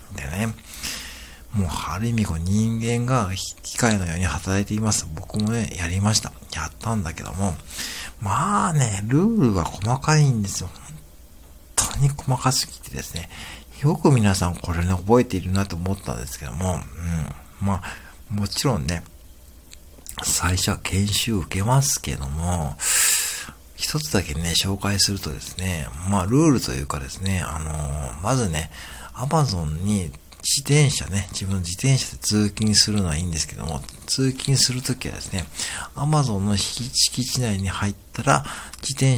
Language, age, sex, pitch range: Japanese, 60-79, male, 75-110 Hz